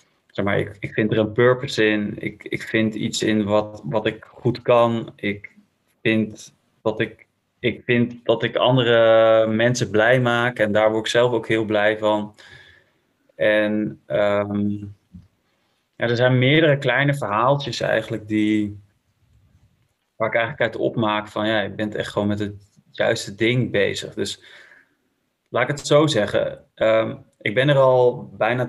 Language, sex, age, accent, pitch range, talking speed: Dutch, male, 20-39, Dutch, 105-125 Hz, 165 wpm